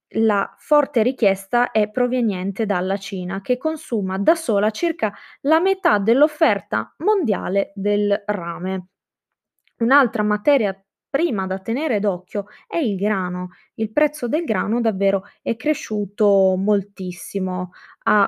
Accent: native